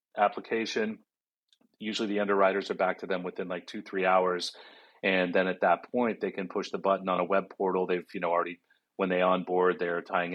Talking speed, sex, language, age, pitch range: 210 wpm, male, English, 40-59, 90-100 Hz